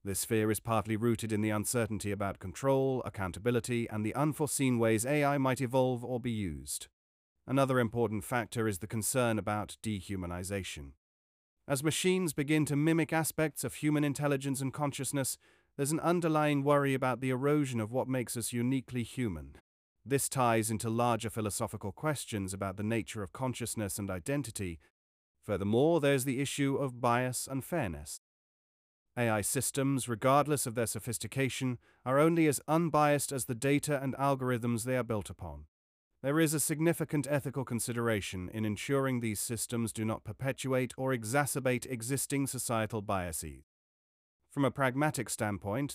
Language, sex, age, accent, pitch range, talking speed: English, male, 40-59, British, 105-140 Hz, 150 wpm